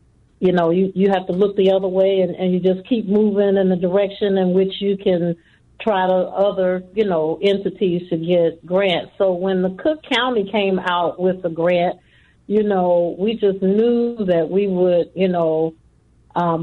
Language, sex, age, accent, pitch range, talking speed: English, female, 50-69, American, 175-195 Hz, 190 wpm